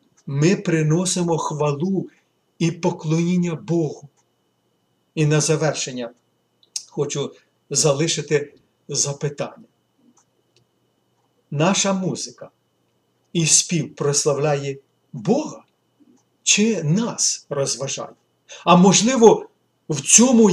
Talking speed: 75 wpm